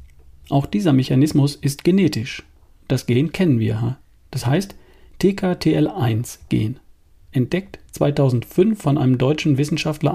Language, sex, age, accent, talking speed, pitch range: German, male, 40-59, German, 105 wpm, 110-155 Hz